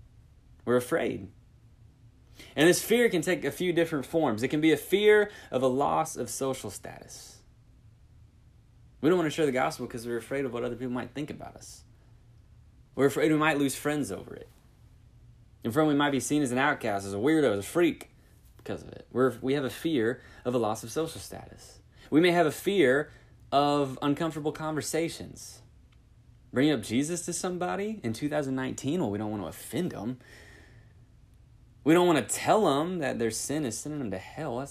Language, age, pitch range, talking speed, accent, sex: English, 20-39, 110-150 Hz, 195 wpm, American, male